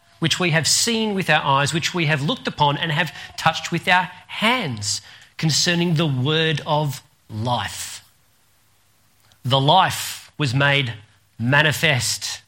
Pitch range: 110-155 Hz